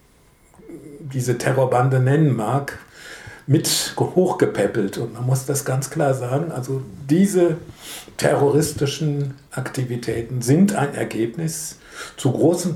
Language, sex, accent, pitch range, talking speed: English, male, German, 125-155 Hz, 105 wpm